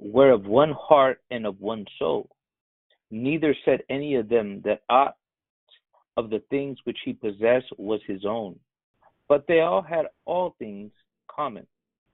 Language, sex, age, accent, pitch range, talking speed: English, male, 50-69, American, 115-140 Hz, 155 wpm